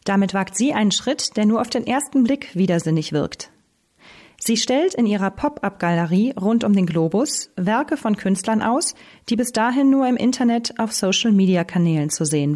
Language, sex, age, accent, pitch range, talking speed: German, female, 40-59, German, 190-240 Hz, 170 wpm